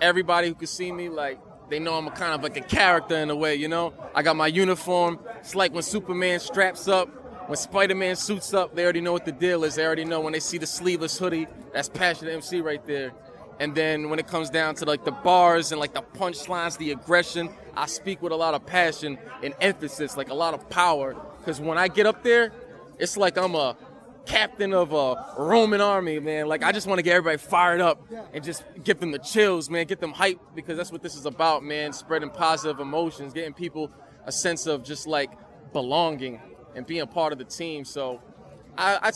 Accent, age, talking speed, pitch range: American, 20-39, 225 wpm, 155-190 Hz